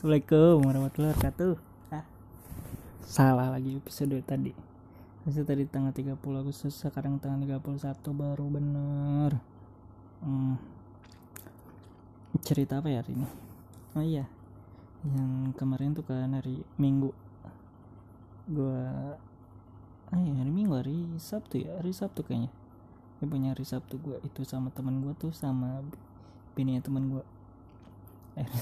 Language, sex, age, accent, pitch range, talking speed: Indonesian, male, 20-39, native, 110-145 Hz, 125 wpm